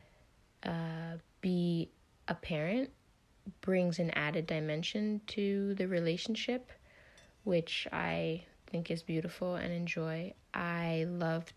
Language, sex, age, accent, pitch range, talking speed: English, female, 20-39, American, 155-180 Hz, 105 wpm